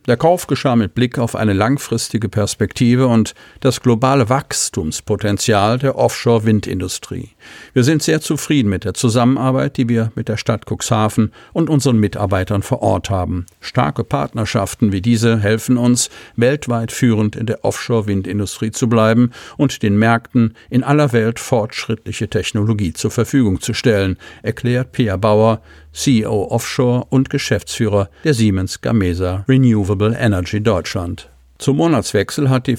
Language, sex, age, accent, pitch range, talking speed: German, male, 50-69, German, 105-125 Hz, 140 wpm